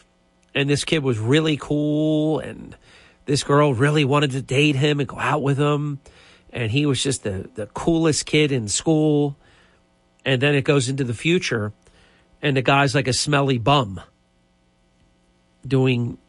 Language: English